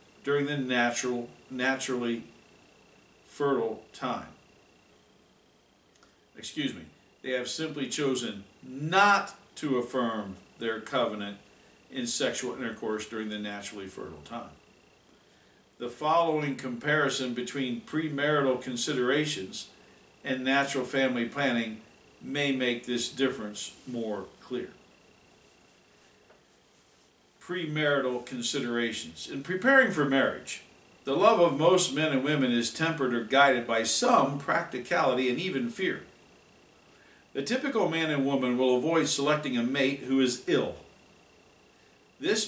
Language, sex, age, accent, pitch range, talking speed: English, male, 50-69, American, 120-145 Hz, 110 wpm